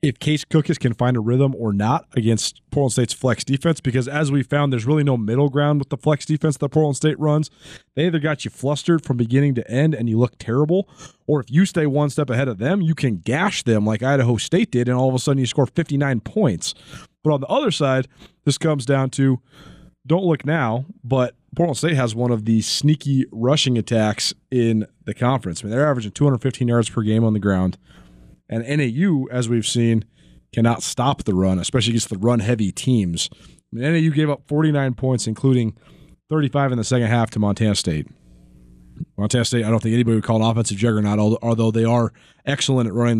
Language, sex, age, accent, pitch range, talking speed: English, male, 30-49, American, 115-145 Hz, 215 wpm